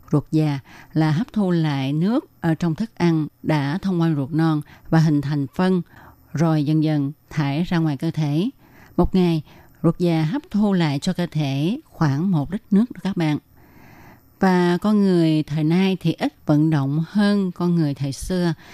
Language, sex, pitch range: Vietnamese, female, 145-180 Hz